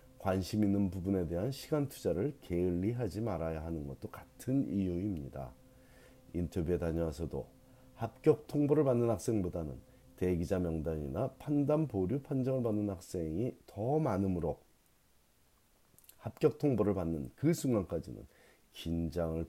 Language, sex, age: Korean, male, 40-59